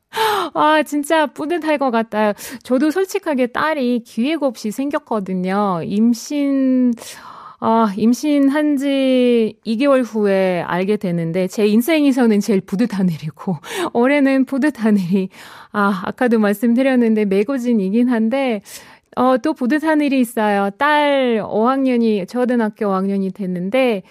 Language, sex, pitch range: Korean, female, 215-320 Hz